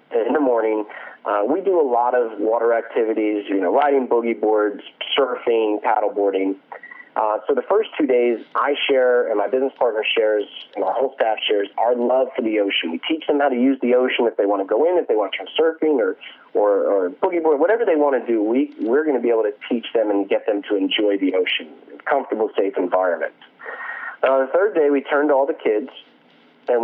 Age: 30-49